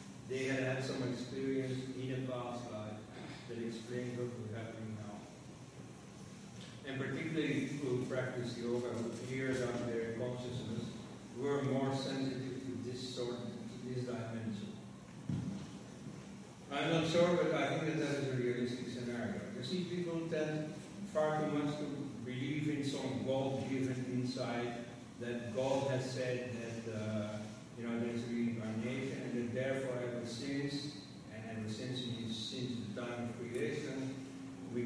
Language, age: English, 50-69